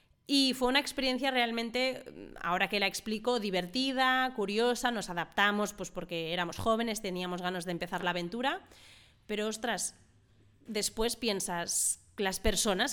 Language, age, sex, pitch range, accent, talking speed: Spanish, 20-39, female, 195-245 Hz, Spanish, 135 wpm